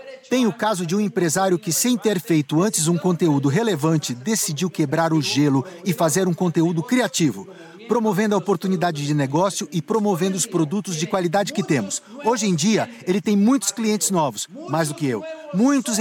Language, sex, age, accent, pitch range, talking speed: Portuguese, male, 50-69, Brazilian, 165-215 Hz, 185 wpm